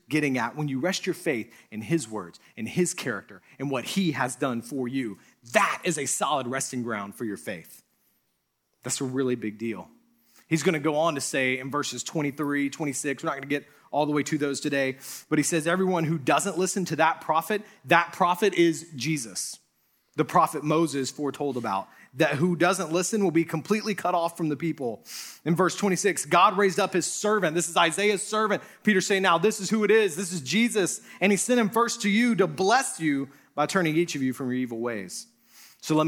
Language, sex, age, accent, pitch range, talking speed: English, male, 30-49, American, 130-180 Hz, 215 wpm